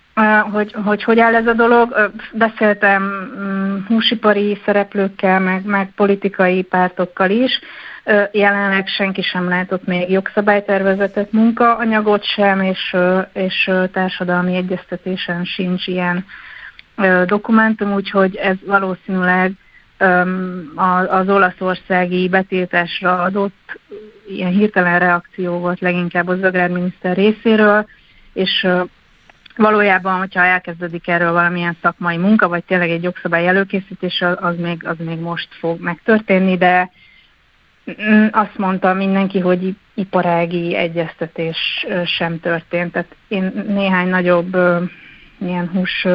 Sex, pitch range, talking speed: female, 180-200 Hz, 105 wpm